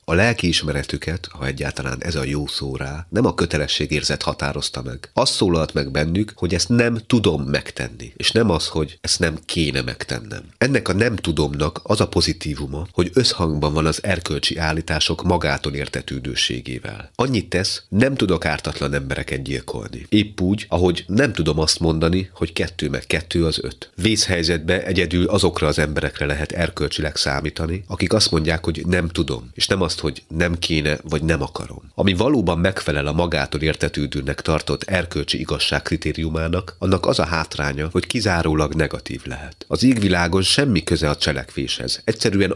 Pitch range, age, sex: 75-95 Hz, 30-49, male